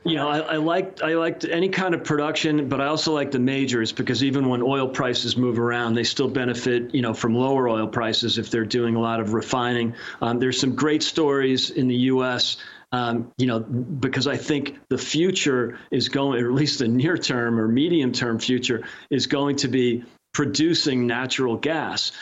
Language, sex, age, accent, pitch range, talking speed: English, male, 40-59, American, 120-145 Hz, 200 wpm